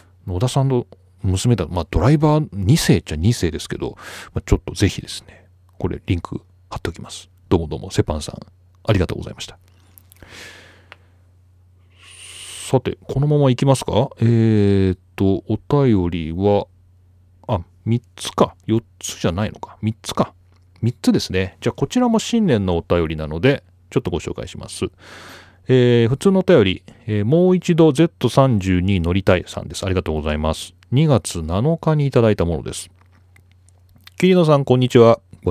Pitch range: 90-140 Hz